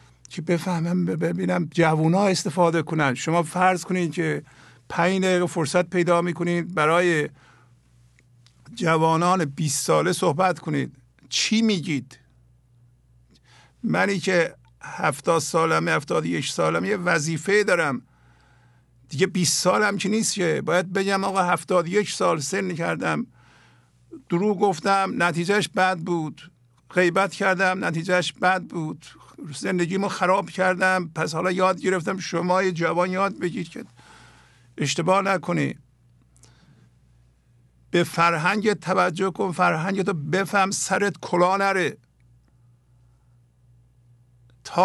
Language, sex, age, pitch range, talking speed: English, male, 50-69, 140-185 Hz, 110 wpm